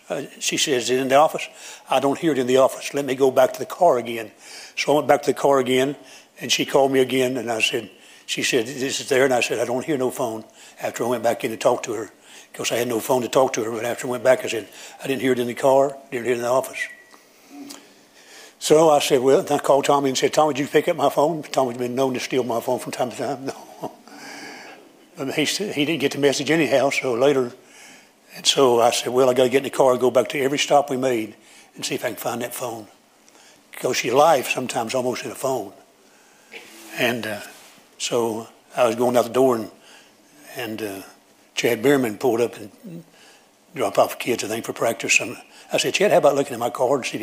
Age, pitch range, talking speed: 60-79, 125-145 Hz, 260 wpm